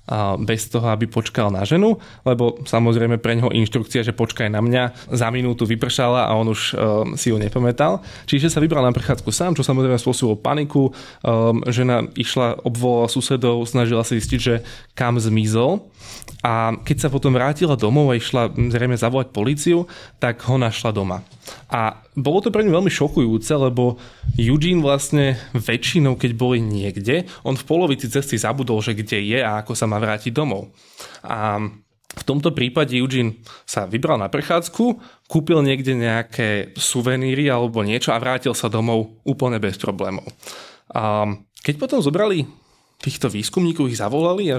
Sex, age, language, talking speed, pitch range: male, 20-39, Slovak, 160 wpm, 115-140 Hz